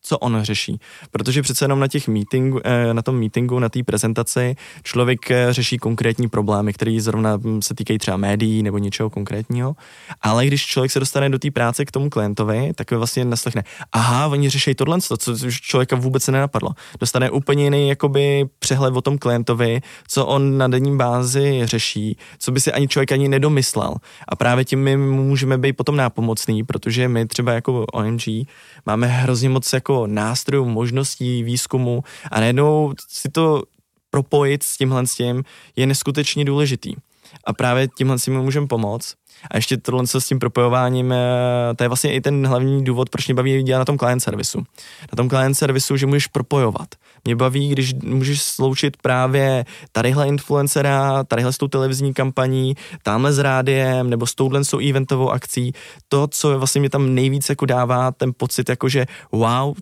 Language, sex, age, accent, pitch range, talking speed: Czech, male, 20-39, native, 120-140 Hz, 170 wpm